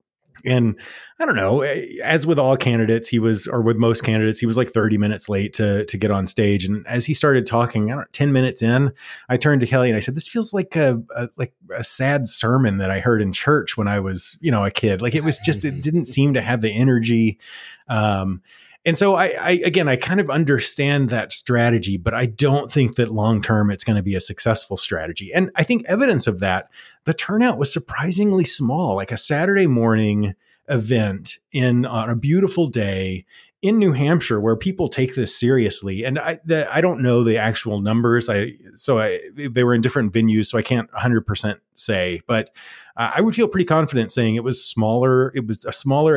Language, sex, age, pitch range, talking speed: English, male, 30-49, 110-140 Hz, 215 wpm